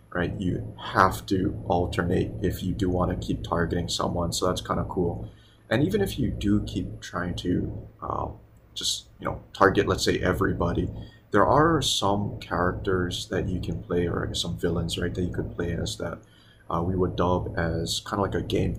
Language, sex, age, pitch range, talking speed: English, male, 30-49, 90-105 Hz, 200 wpm